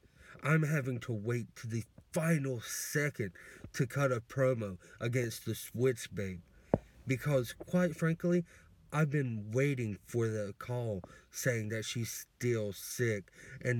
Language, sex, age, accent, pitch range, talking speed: English, male, 30-49, American, 100-125 Hz, 135 wpm